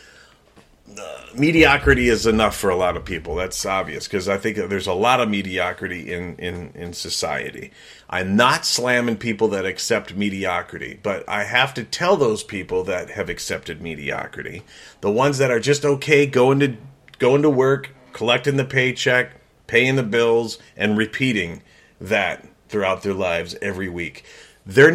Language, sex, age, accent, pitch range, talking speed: English, male, 40-59, American, 115-145 Hz, 155 wpm